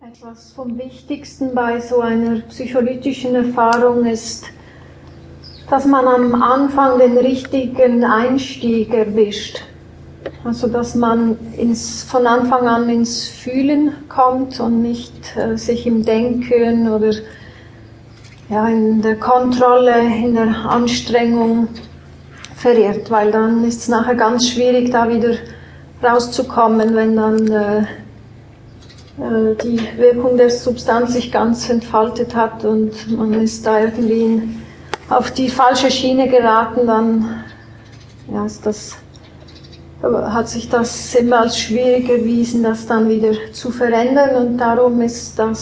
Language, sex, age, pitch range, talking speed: German, female, 40-59, 220-245 Hz, 120 wpm